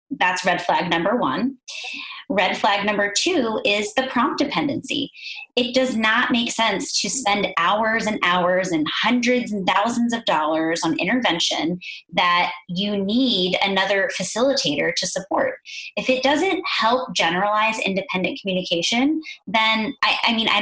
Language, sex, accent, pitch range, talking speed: English, female, American, 190-260 Hz, 145 wpm